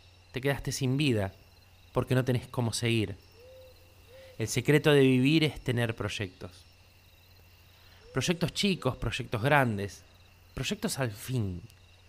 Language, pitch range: Spanish, 90-140 Hz